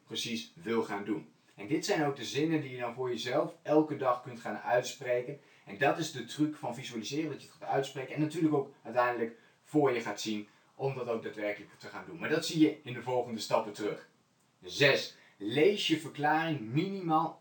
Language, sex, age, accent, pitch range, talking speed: Dutch, male, 20-39, Dutch, 125-155 Hz, 210 wpm